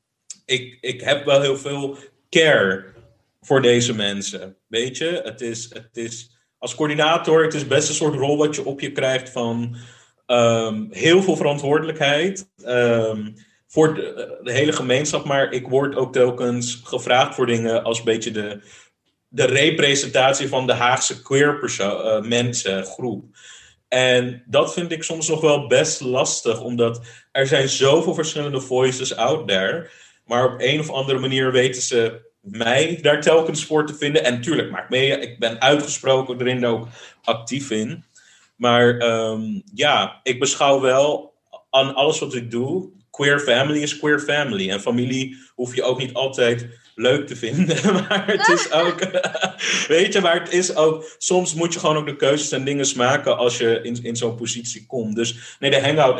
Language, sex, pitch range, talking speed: Dutch, male, 120-150 Hz, 170 wpm